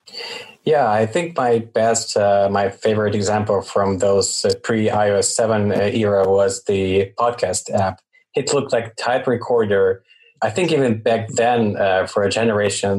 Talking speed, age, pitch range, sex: 155 wpm, 20-39, 100-120 Hz, male